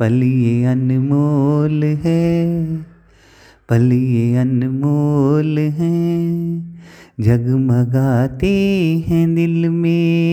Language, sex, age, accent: Hindi, male, 30-49, native